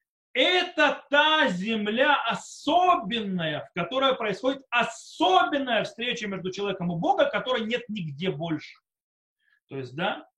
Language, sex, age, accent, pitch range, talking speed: Russian, male, 30-49, native, 185-295 Hz, 115 wpm